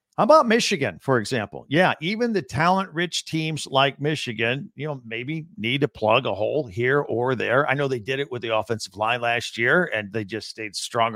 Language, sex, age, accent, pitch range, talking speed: English, male, 50-69, American, 115-150 Hz, 215 wpm